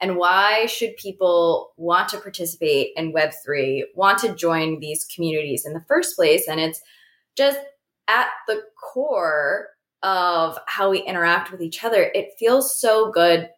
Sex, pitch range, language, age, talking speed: female, 170-235 Hz, English, 20-39, 155 wpm